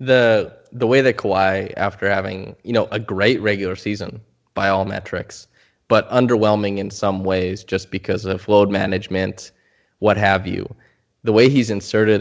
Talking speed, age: 160 wpm, 10-29